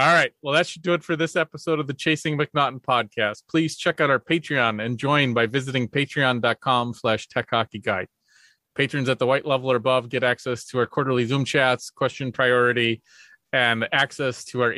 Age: 30-49